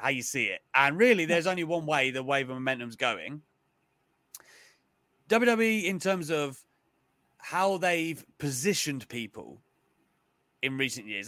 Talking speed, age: 140 wpm, 30-49